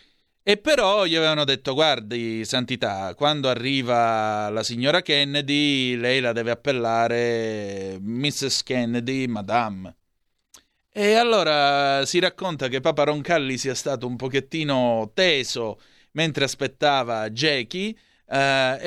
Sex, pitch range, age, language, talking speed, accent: male, 120-160 Hz, 30-49, Italian, 110 wpm, native